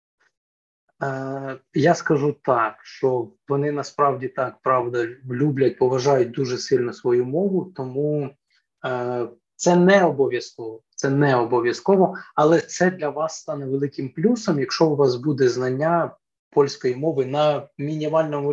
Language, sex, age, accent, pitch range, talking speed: Ukrainian, male, 20-39, native, 130-165 Hz, 125 wpm